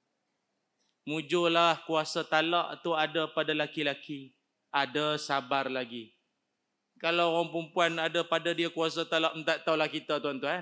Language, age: Malay, 30-49